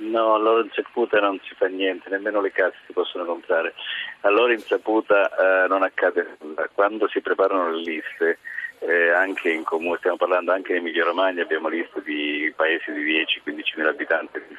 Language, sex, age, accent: Italian, male, 40-59, native